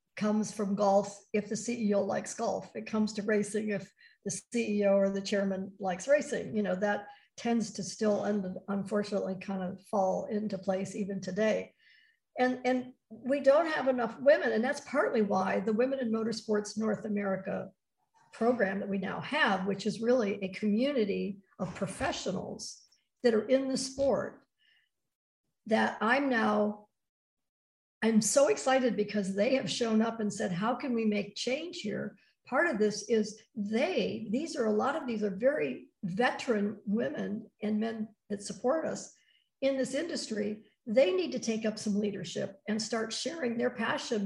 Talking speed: 165 wpm